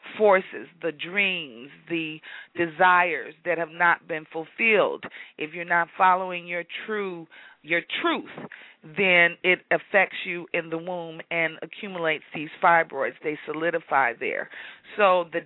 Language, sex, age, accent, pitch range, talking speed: English, female, 40-59, American, 170-195 Hz, 130 wpm